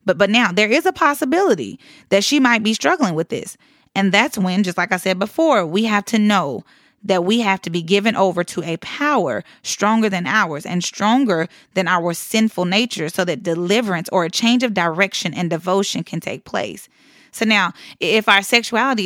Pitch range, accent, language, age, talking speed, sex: 180-235 Hz, American, English, 30-49, 200 wpm, female